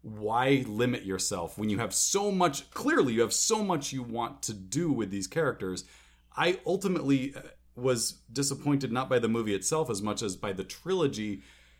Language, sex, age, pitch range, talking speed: English, male, 30-49, 95-135 Hz, 180 wpm